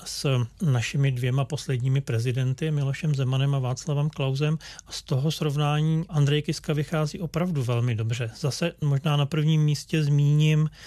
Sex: male